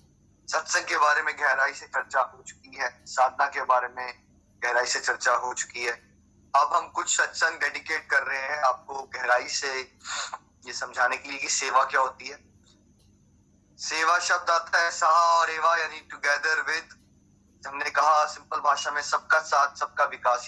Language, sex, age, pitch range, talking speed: Hindi, male, 30-49, 125-170 Hz, 175 wpm